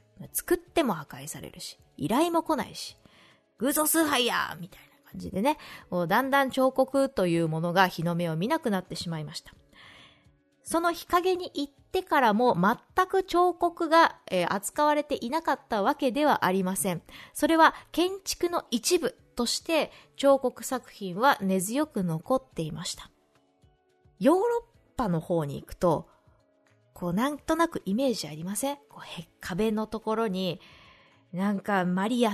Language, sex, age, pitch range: Japanese, female, 20-39, 180-290 Hz